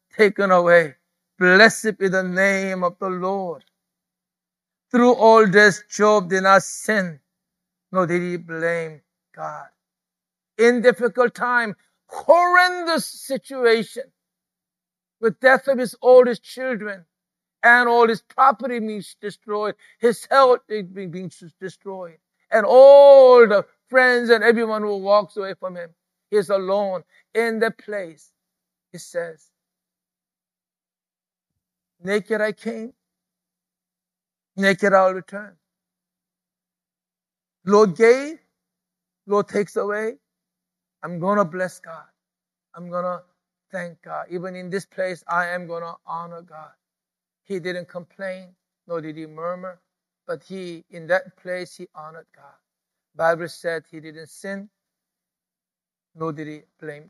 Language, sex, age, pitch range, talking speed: English, male, 60-79, 175-215 Hz, 120 wpm